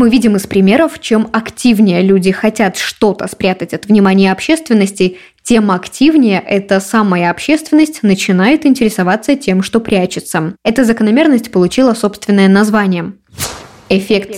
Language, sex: Russian, female